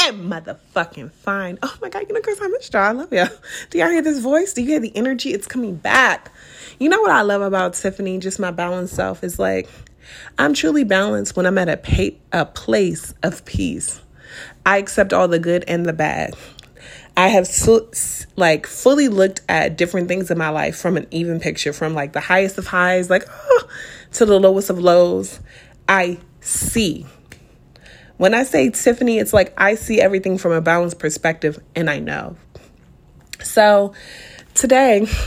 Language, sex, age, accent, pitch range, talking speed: English, female, 30-49, American, 165-215 Hz, 180 wpm